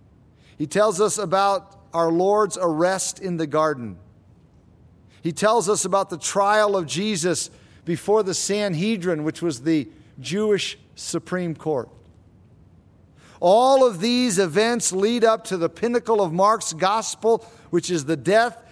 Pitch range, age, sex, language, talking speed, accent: 130-195 Hz, 50-69, male, English, 140 wpm, American